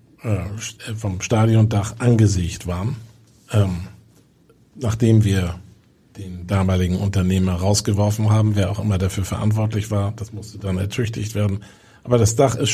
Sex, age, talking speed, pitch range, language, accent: male, 50-69, 125 wpm, 105-120 Hz, German, German